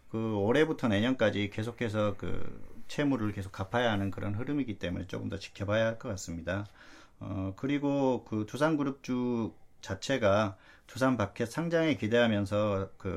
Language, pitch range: Korean, 100-125 Hz